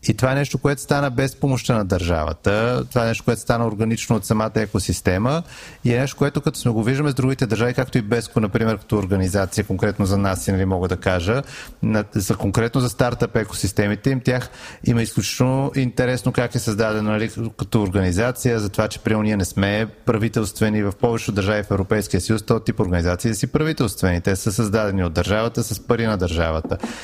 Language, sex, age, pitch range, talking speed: Bulgarian, male, 30-49, 100-120 Hz, 195 wpm